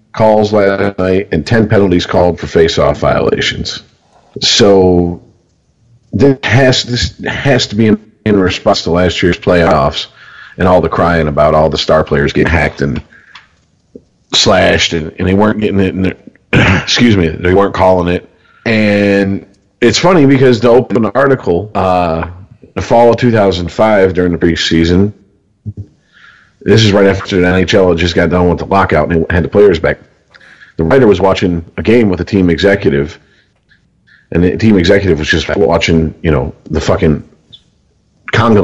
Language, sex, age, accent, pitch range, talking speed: English, male, 40-59, American, 85-110 Hz, 160 wpm